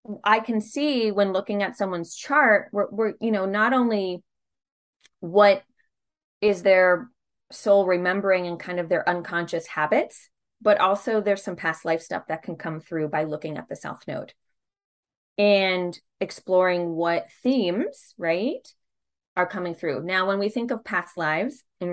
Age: 20-39